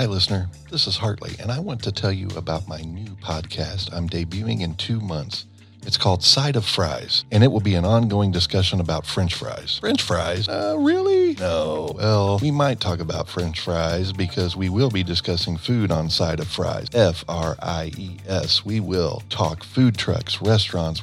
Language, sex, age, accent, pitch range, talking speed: English, male, 40-59, American, 90-115 Hz, 185 wpm